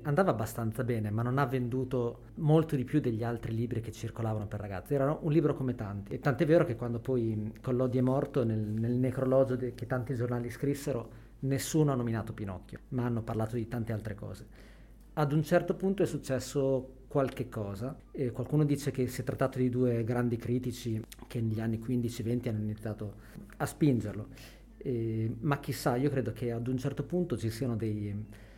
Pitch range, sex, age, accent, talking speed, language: 115-135 Hz, male, 40-59, native, 190 wpm, Italian